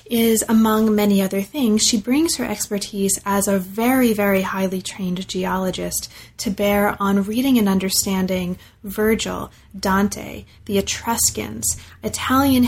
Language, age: English, 20-39